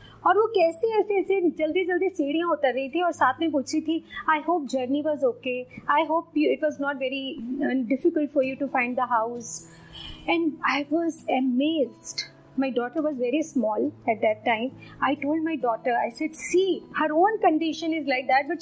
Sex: female